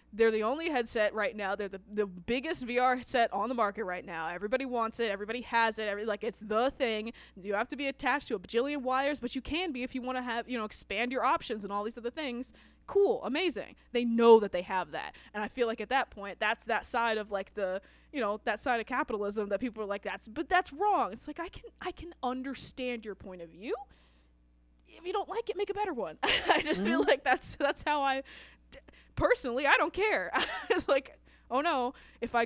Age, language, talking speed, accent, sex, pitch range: 20-39, English, 240 wpm, American, female, 205-265 Hz